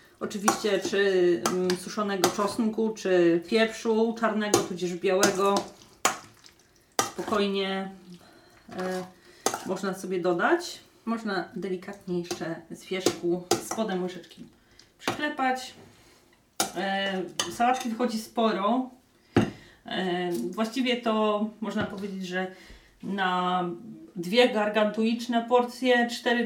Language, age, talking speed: Polish, 30-49, 85 wpm